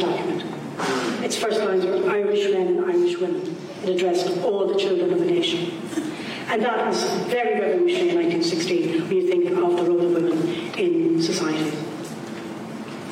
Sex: female